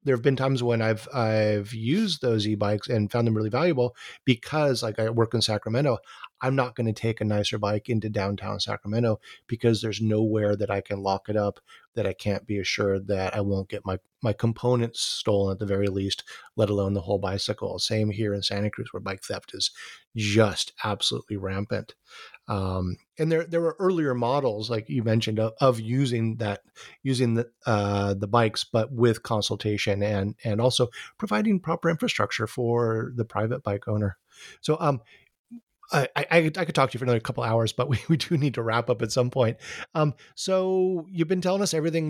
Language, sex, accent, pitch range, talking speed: English, male, American, 105-140 Hz, 200 wpm